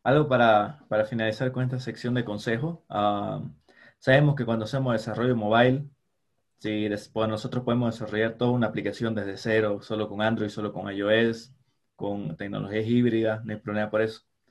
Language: Spanish